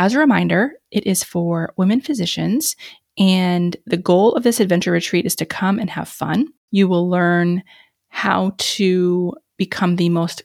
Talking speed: 165 wpm